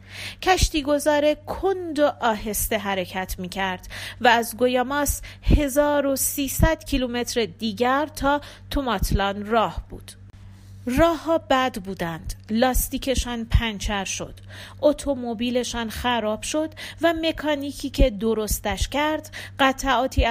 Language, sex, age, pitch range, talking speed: Persian, female, 40-59, 220-285 Hz, 100 wpm